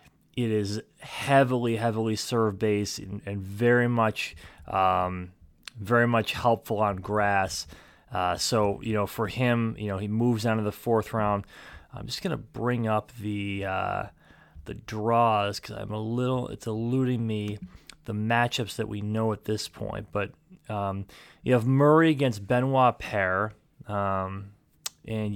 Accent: American